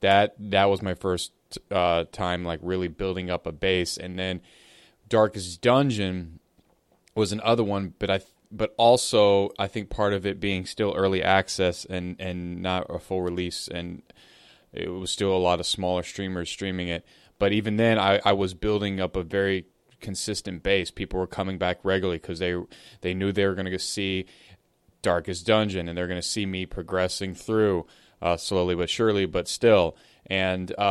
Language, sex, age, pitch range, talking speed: English, male, 20-39, 90-100 Hz, 175 wpm